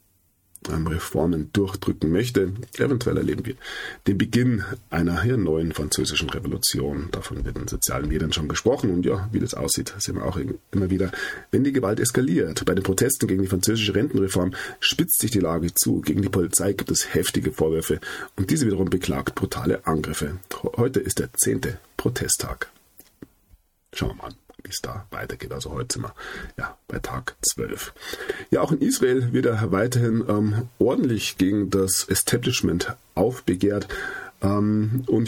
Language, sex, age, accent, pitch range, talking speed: German, male, 40-59, German, 90-115 Hz, 160 wpm